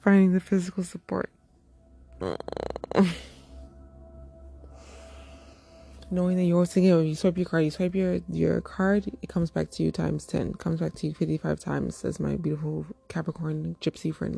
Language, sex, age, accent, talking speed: English, female, 20-39, American, 160 wpm